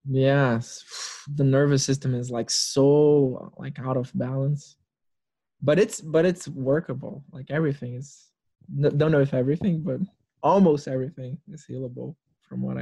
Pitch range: 130-165 Hz